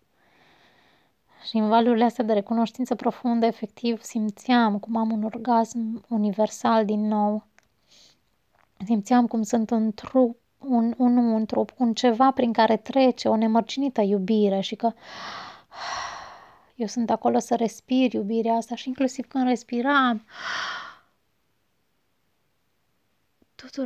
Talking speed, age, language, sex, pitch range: 120 wpm, 20-39, Romanian, female, 200-235 Hz